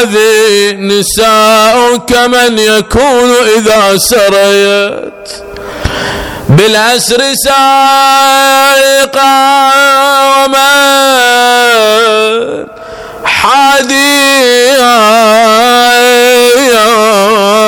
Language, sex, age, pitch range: Arabic, male, 30-49, 220-255 Hz